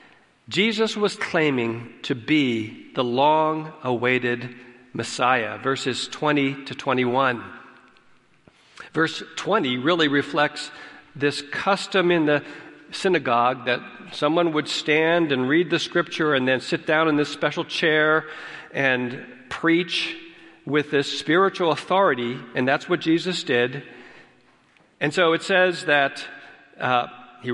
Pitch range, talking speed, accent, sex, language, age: 135-185 Hz, 120 wpm, American, male, English, 50-69